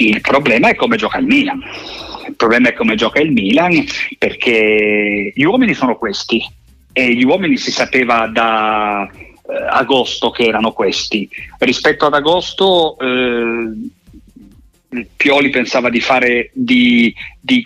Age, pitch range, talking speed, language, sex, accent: 40-59, 110-155 Hz, 135 wpm, Italian, male, native